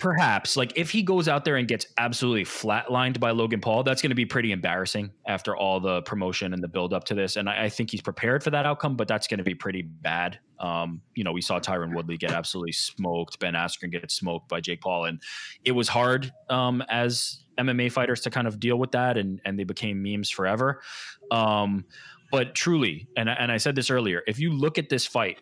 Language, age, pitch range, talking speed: English, 20-39, 100-125 Hz, 230 wpm